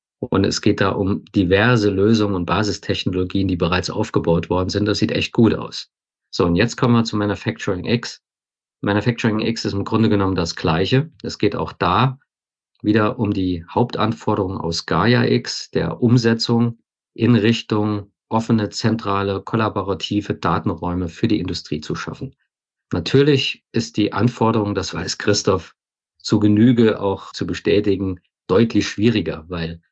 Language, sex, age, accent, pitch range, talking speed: German, male, 50-69, German, 90-110 Hz, 150 wpm